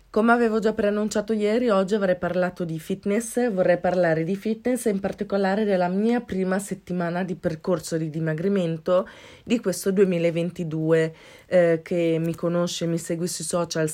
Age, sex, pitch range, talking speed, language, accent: 20-39, female, 160-185 Hz, 155 wpm, Italian, native